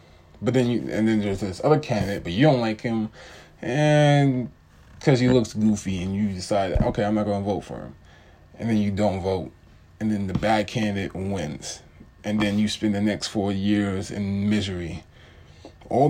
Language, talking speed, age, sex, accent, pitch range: English, 190 wpm, 20-39, male, American, 85-110 Hz